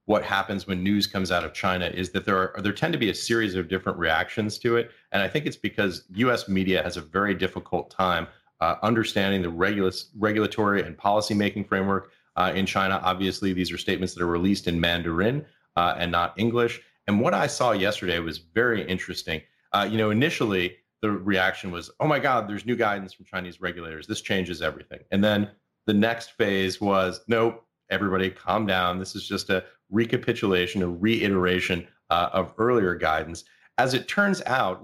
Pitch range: 90-105 Hz